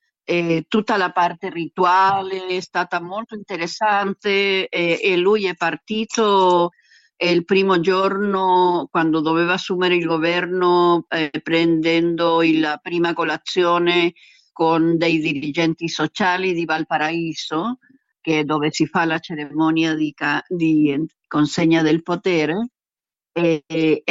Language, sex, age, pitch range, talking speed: Italian, female, 50-69, 160-185 Hz, 115 wpm